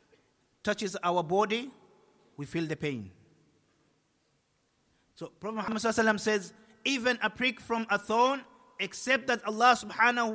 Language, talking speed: English, 130 wpm